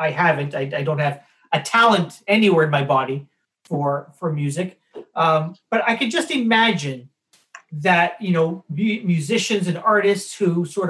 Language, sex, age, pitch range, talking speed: English, male, 40-59, 150-195 Hz, 165 wpm